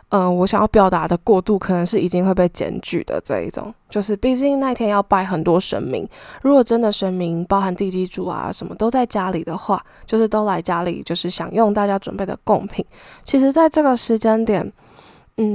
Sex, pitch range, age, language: female, 190-230 Hz, 10-29, Chinese